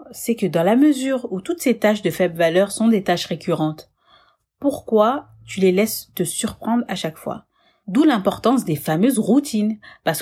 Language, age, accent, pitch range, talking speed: French, 40-59, French, 170-235 Hz, 180 wpm